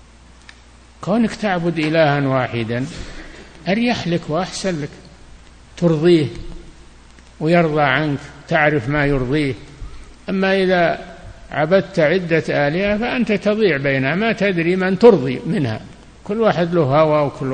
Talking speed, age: 110 wpm, 60-79